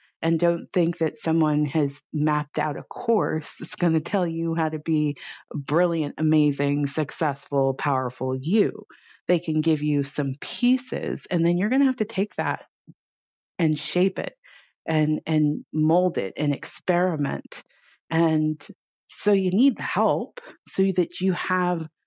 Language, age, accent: English, 30-49, American